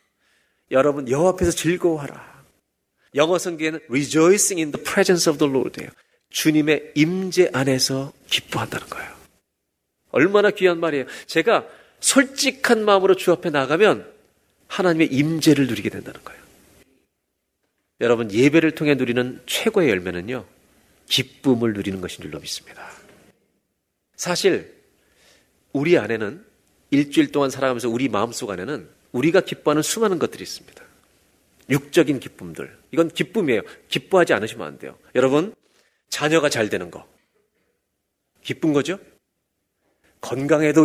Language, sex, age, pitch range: Korean, male, 40-59, 130-185 Hz